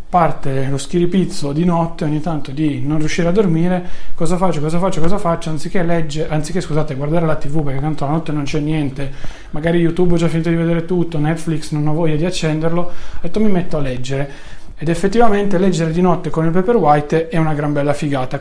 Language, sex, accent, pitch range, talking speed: Italian, male, native, 140-170 Hz, 215 wpm